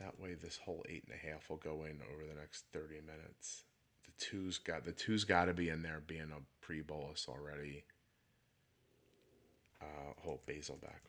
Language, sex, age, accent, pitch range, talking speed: English, male, 30-49, American, 85-130 Hz, 185 wpm